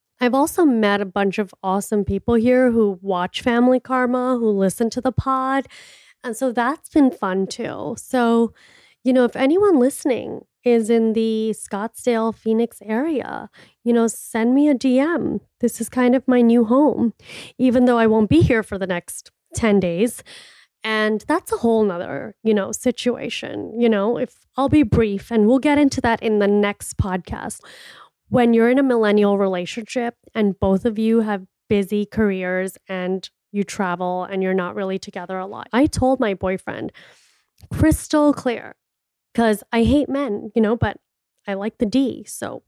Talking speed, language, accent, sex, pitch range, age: 175 wpm, English, American, female, 205-255 Hz, 30-49